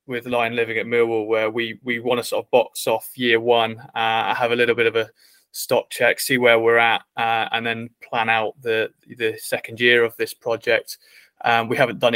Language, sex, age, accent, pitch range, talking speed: English, male, 20-39, British, 115-140 Hz, 220 wpm